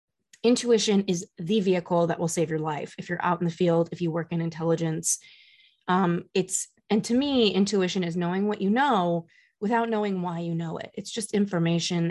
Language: English